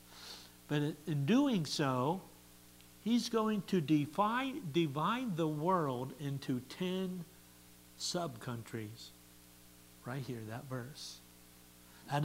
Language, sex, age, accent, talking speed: English, male, 60-79, American, 95 wpm